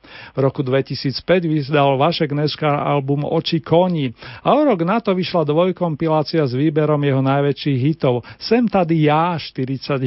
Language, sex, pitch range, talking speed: Slovak, male, 145-175 Hz, 150 wpm